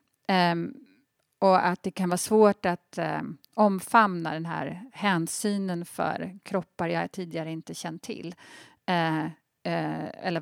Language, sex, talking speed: Swedish, female, 130 wpm